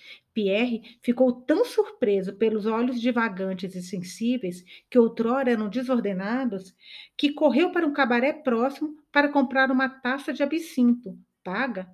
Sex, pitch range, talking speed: female, 210-265 Hz, 130 wpm